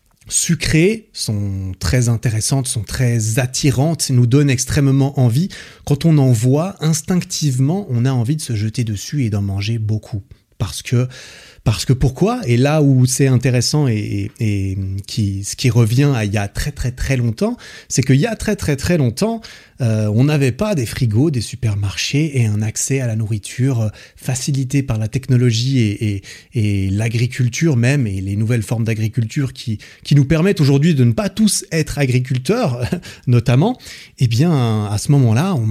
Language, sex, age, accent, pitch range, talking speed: French, male, 30-49, French, 110-145 Hz, 180 wpm